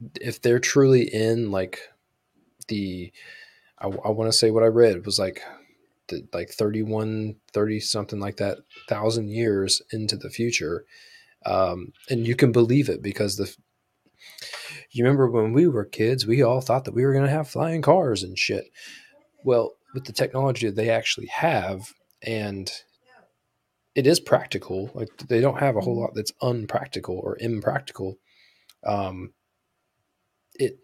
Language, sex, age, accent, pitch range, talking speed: English, male, 20-39, American, 105-120 Hz, 155 wpm